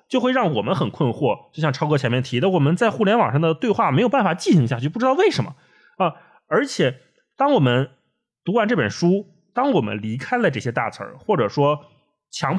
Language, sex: Chinese, male